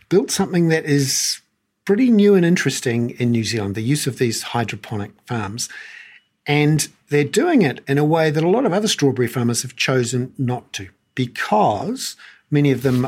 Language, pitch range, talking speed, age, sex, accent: English, 115-150 Hz, 180 wpm, 50-69, male, Australian